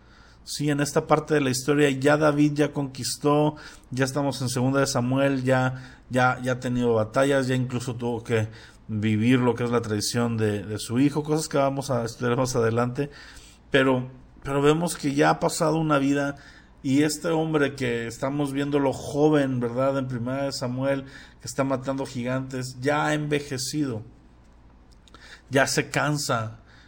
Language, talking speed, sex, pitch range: Spanish, 170 wpm, male, 125-145 Hz